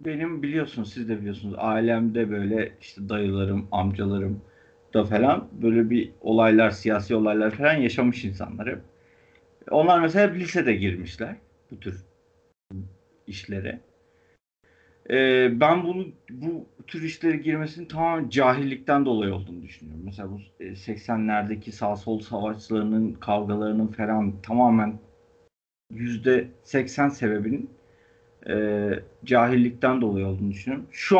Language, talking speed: Turkish, 110 wpm